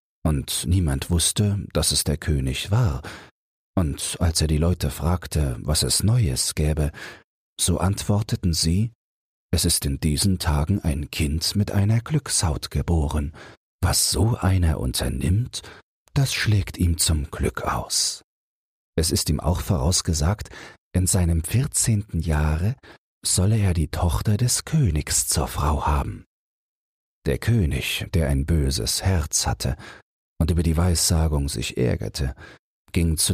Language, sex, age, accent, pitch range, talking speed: German, male, 40-59, German, 80-100 Hz, 135 wpm